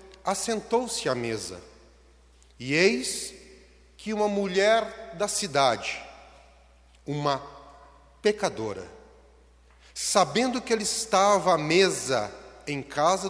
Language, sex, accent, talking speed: Portuguese, male, Brazilian, 90 wpm